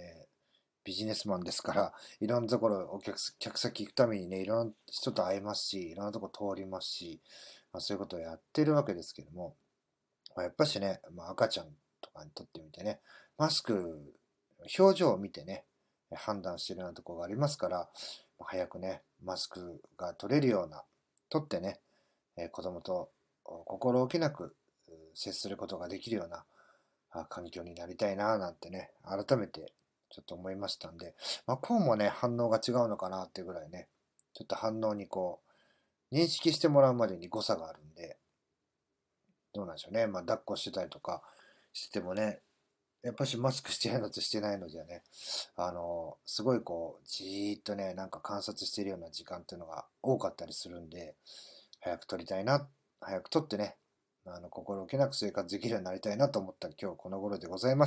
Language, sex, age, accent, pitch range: Japanese, male, 40-59, native, 95-135 Hz